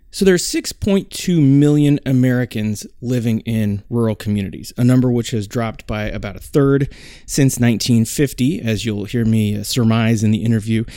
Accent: American